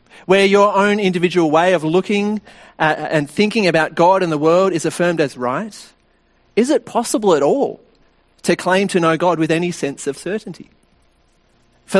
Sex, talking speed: male, 170 wpm